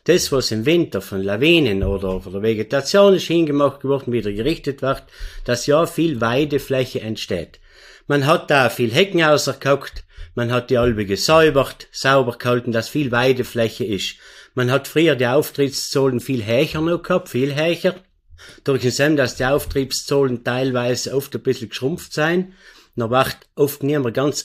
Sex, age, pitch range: male, 50-69, 115-150 Hz